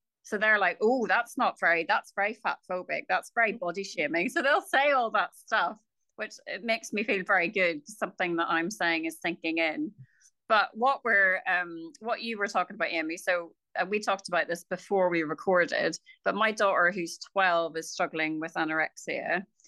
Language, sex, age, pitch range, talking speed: English, female, 30-49, 170-220 Hz, 190 wpm